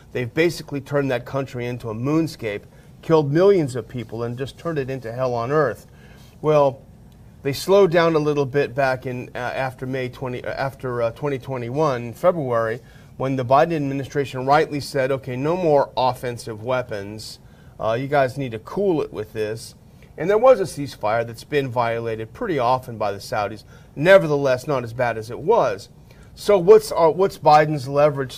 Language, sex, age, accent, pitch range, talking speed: English, male, 40-59, American, 120-155 Hz, 180 wpm